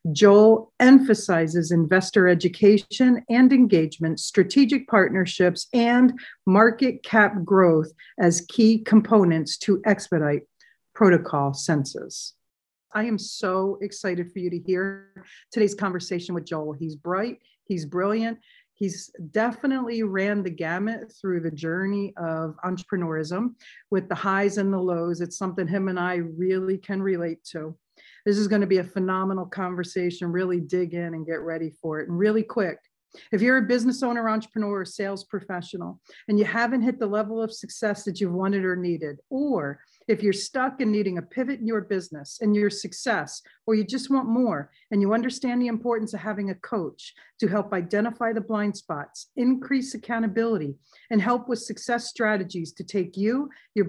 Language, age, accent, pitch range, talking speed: English, 50-69, American, 180-230 Hz, 165 wpm